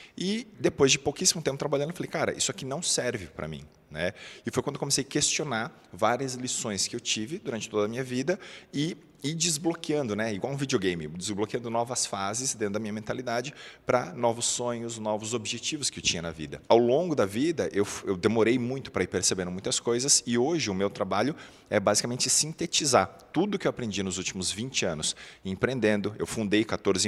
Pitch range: 95-135 Hz